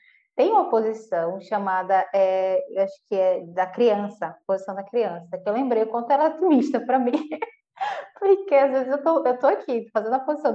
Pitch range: 200-255 Hz